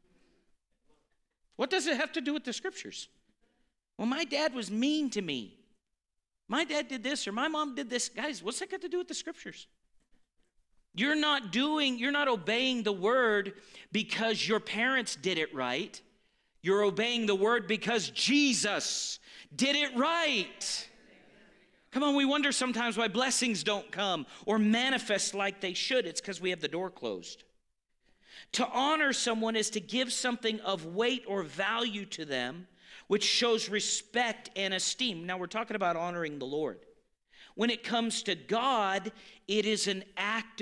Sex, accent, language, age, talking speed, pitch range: male, American, English, 50-69, 165 wpm, 195-255 Hz